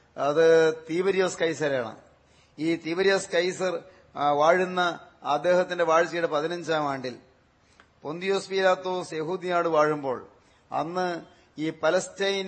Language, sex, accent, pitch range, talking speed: Malayalam, male, native, 160-180 Hz, 85 wpm